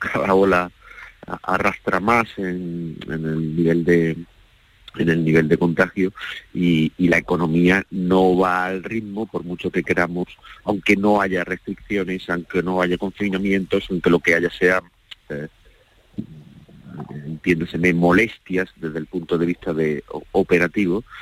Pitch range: 80-95 Hz